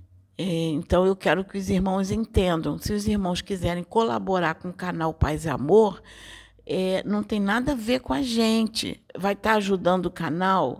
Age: 50-69